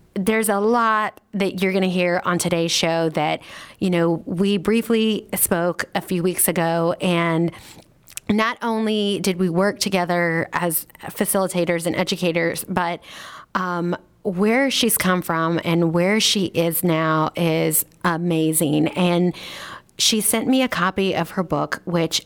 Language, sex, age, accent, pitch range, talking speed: English, female, 30-49, American, 170-205 Hz, 150 wpm